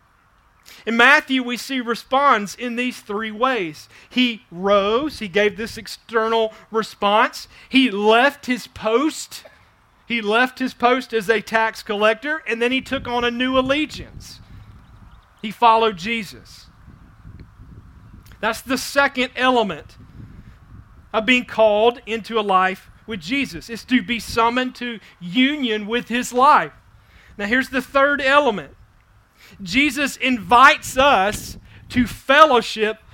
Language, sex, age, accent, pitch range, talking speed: English, male, 40-59, American, 210-265 Hz, 125 wpm